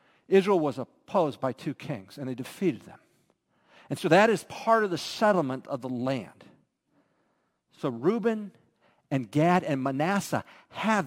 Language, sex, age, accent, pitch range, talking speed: English, male, 50-69, American, 145-190 Hz, 150 wpm